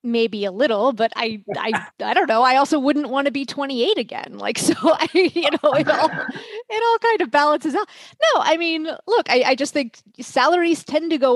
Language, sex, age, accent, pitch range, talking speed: English, female, 30-49, American, 200-275 Hz, 220 wpm